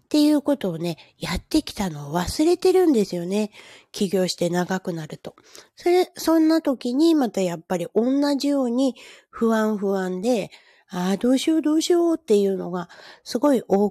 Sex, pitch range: female, 170-240 Hz